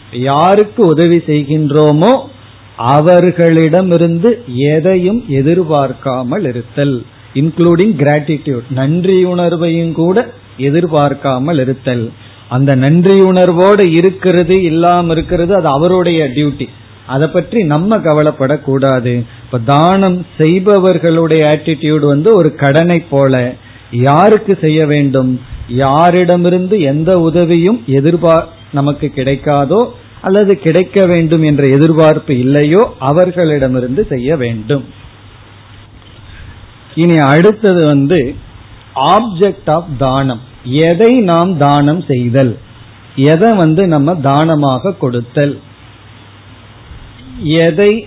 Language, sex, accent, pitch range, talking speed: Tamil, male, native, 130-170 Hz, 80 wpm